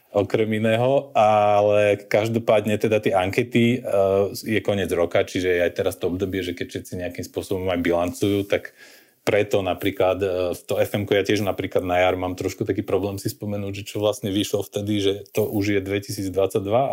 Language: Slovak